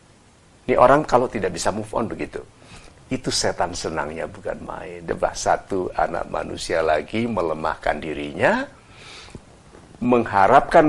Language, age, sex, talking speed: Indonesian, 50-69, male, 115 wpm